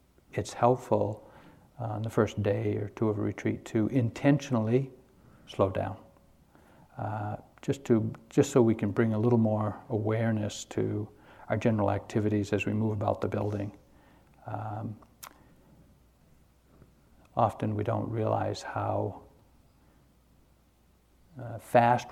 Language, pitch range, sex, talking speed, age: English, 105-120 Hz, male, 120 wpm, 60-79